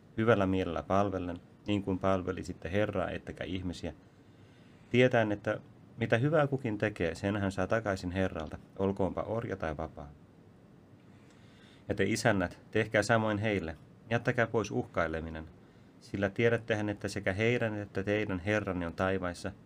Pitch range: 90-110 Hz